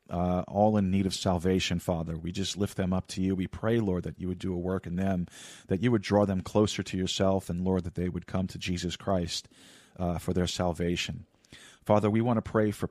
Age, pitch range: 40-59, 90-100 Hz